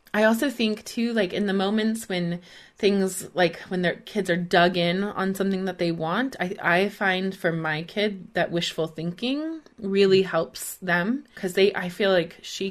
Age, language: 20-39, English